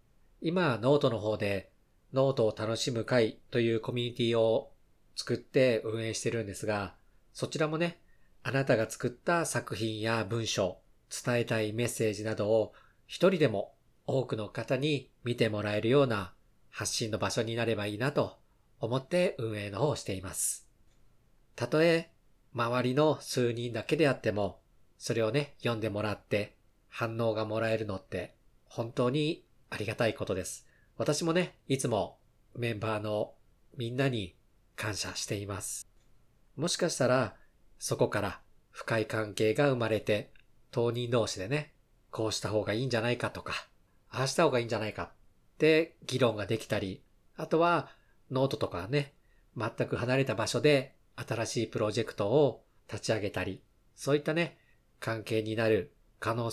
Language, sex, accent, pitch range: Japanese, male, native, 110-135 Hz